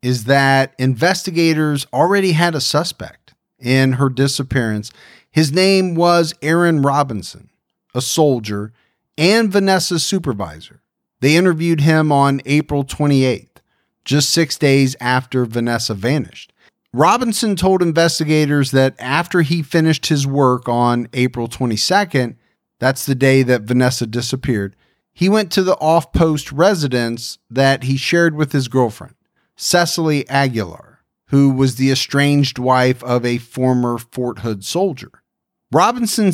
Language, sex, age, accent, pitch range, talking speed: English, male, 40-59, American, 125-165 Hz, 125 wpm